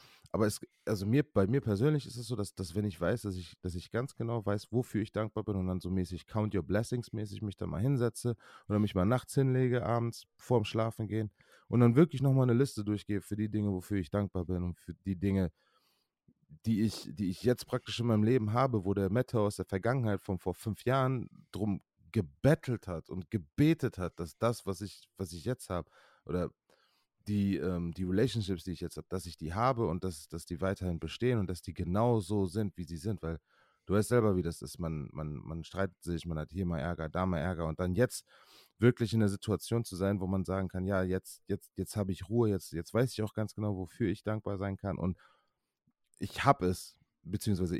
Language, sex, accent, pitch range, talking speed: German, male, German, 90-115 Hz, 230 wpm